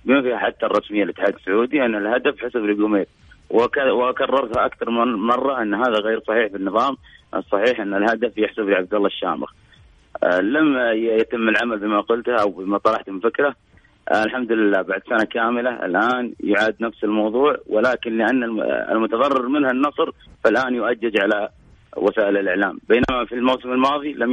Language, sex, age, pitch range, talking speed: Arabic, male, 30-49, 105-125 Hz, 160 wpm